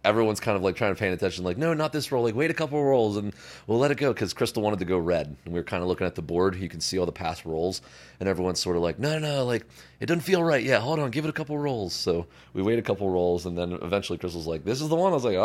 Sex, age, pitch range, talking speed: male, 30-49, 95-155 Hz, 325 wpm